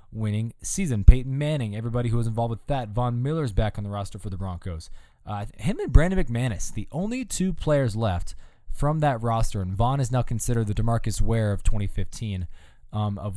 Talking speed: 200 wpm